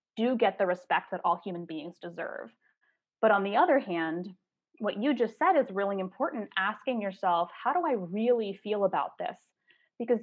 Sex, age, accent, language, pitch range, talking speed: female, 20-39, American, English, 185-245 Hz, 180 wpm